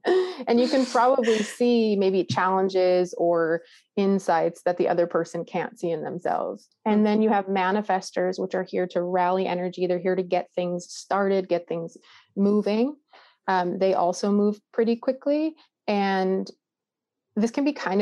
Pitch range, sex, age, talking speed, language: 175-210 Hz, female, 30-49, 160 wpm, English